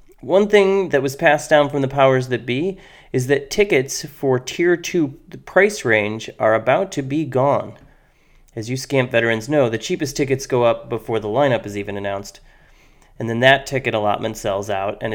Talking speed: 190 wpm